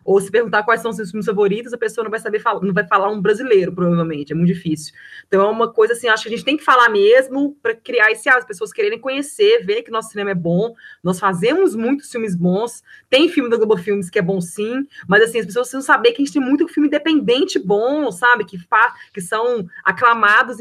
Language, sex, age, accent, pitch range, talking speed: Portuguese, female, 20-39, Brazilian, 195-255 Hz, 250 wpm